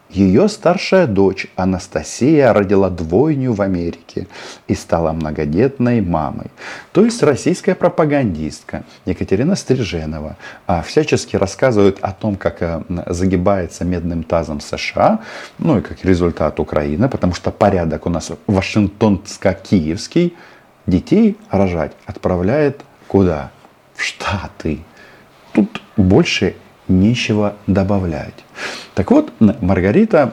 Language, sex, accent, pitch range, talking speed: Russian, male, native, 90-130 Hz, 100 wpm